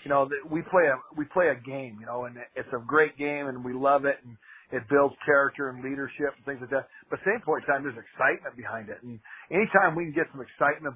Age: 40-59